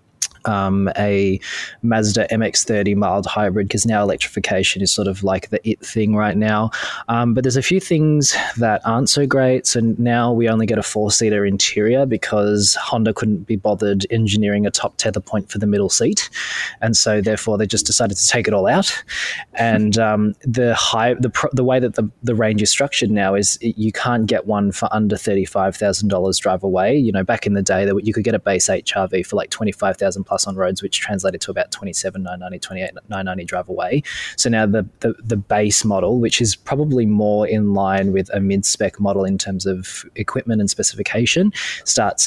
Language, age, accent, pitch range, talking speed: English, 20-39, Australian, 100-115 Hz, 200 wpm